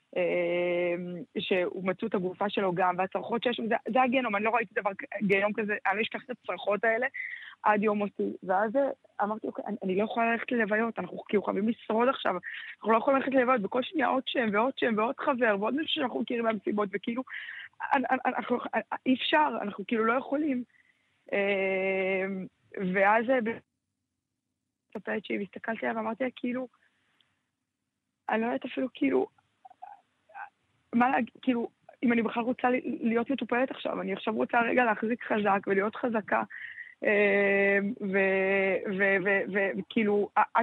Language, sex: Hebrew, female